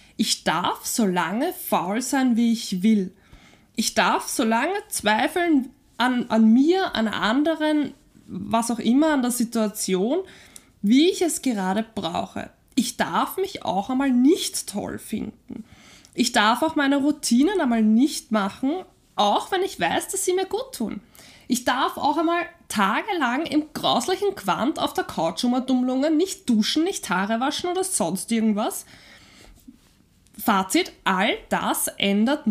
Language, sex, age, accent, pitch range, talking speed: German, female, 20-39, German, 220-310 Hz, 145 wpm